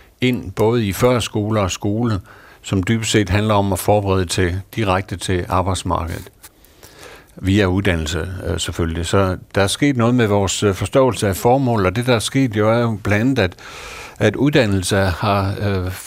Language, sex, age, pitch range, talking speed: Danish, male, 60-79, 95-120 Hz, 170 wpm